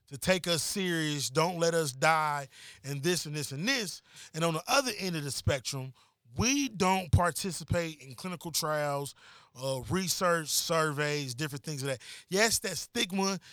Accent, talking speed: American, 170 wpm